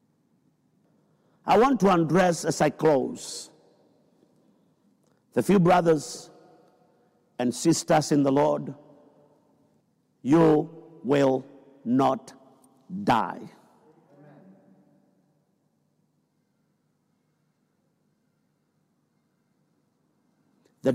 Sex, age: male, 50-69